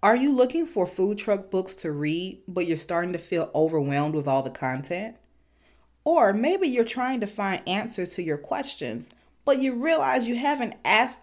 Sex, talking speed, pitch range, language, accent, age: female, 185 wpm, 150-225 Hz, English, American, 30-49